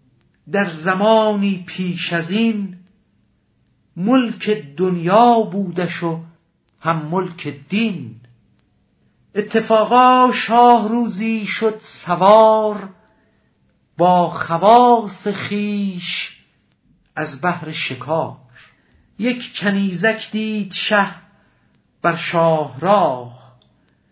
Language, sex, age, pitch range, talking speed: Persian, male, 50-69, 165-210 Hz, 75 wpm